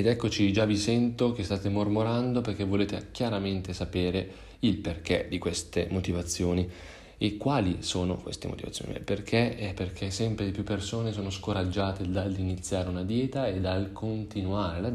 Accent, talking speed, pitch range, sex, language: native, 155 wpm, 90-105 Hz, male, Italian